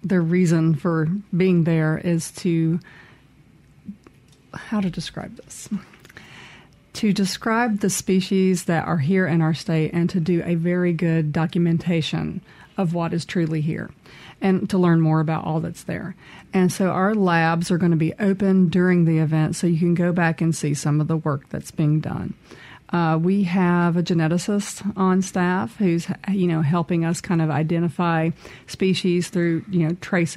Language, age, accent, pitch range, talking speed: English, 40-59, American, 165-185 Hz, 170 wpm